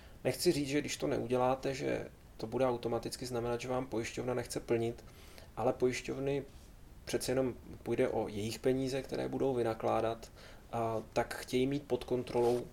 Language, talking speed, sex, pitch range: Czech, 150 wpm, male, 110-125 Hz